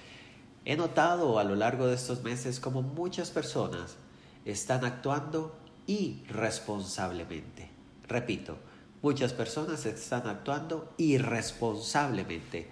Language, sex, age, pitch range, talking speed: Spanish, male, 50-69, 115-155 Hz, 95 wpm